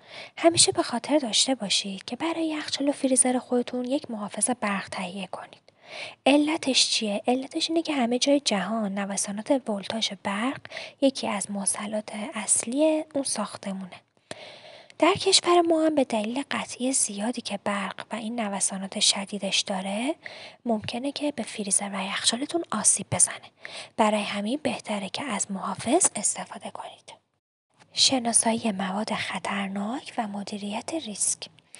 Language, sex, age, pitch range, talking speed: Persian, female, 20-39, 205-270 Hz, 130 wpm